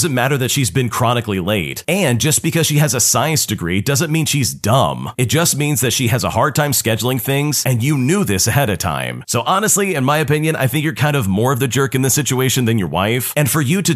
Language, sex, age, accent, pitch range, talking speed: English, male, 40-59, American, 110-150 Hz, 265 wpm